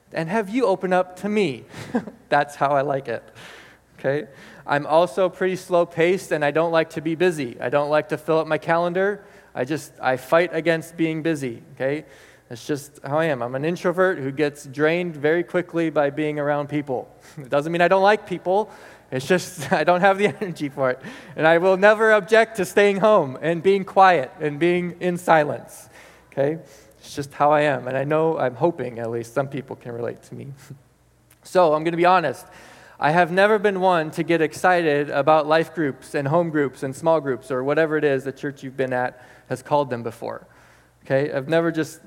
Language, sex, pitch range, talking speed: English, male, 145-185 Hz, 210 wpm